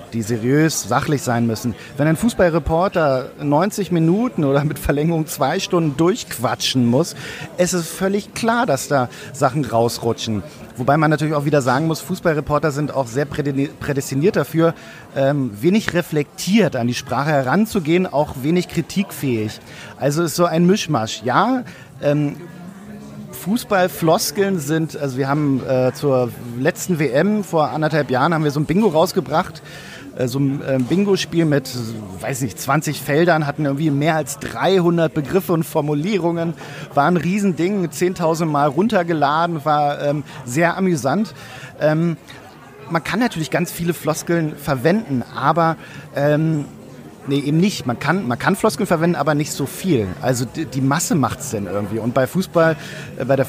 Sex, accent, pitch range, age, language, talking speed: male, German, 135-170 Hz, 50-69, German, 150 wpm